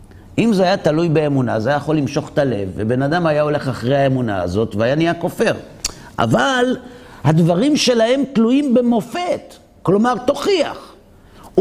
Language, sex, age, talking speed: Hebrew, male, 50-69, 145 wpm